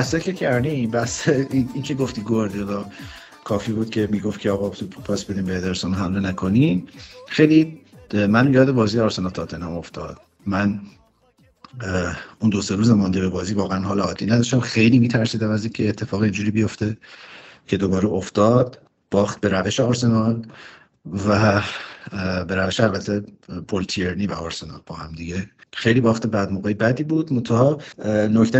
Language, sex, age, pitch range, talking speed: Persian, male, 50-69, 95-120 Hz, 150 wpm